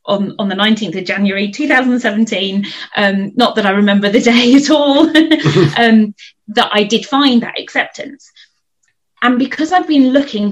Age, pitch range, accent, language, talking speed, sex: 20-39, 185-235 Hz, British, English, 160 wpm, female